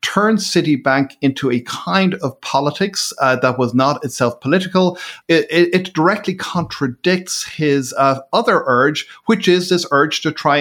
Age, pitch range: 50-69, 130-170 Hz